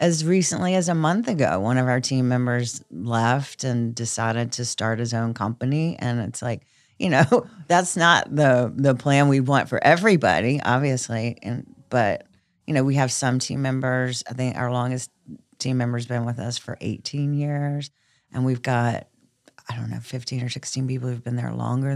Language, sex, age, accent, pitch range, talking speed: English, female, 40-59, American, 120-135 Hz, 190 wpm